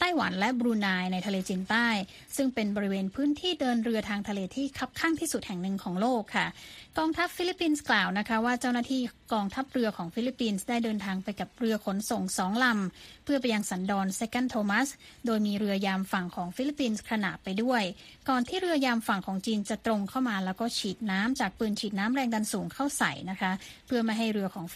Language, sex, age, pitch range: Thai, female, 20-39, 200-250 Hz